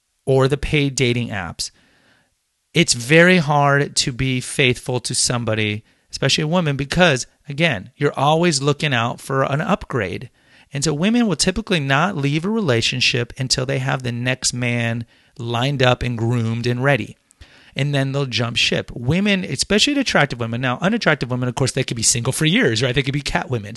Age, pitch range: 30-49, 120-155 Hz